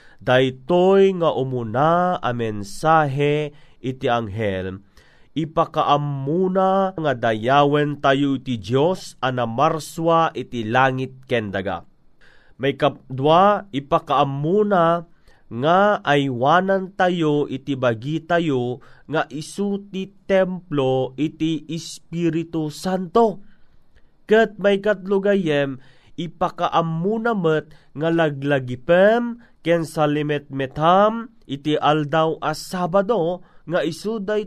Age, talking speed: 30-49, 80 wpm